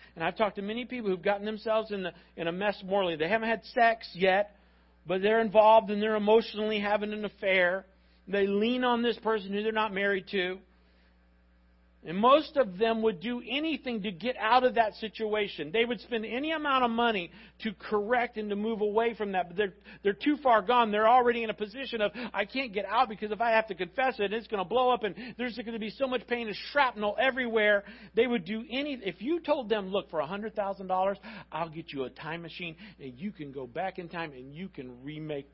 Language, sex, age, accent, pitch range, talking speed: English, male, 50-69, American, 160-225 Hz, 225 wpm